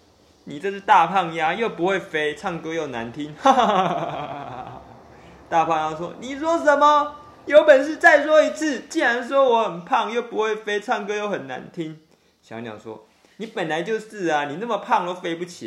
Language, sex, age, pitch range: Chinese, male, 20-39, 150-225 Hz